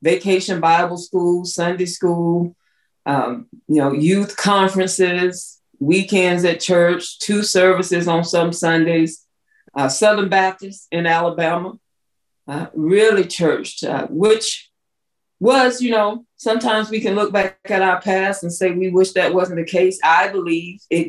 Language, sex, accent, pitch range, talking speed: English, female, American, 165-195 Hz, 140 wpm